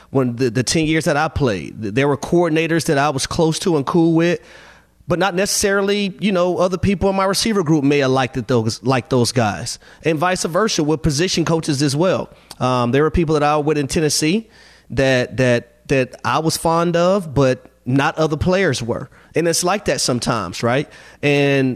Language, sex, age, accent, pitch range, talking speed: English, male, 30-49, American, 140-195 Hz, 200 wpm